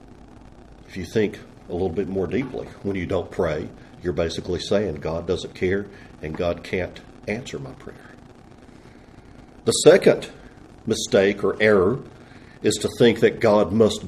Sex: male